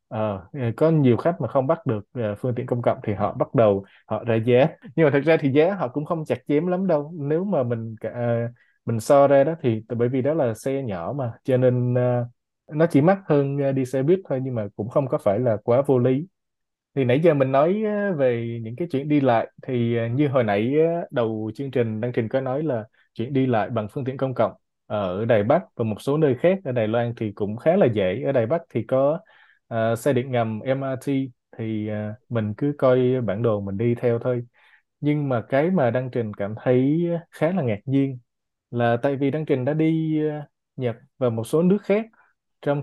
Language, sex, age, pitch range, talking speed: Vietnamese, male, 20-39, 120-150 Hz, 230 wpm